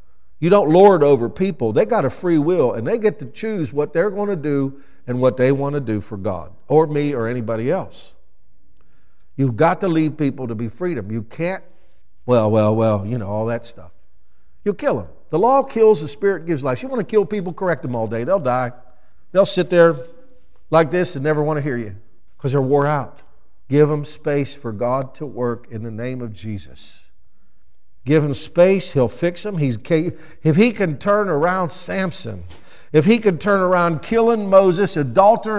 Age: 50-69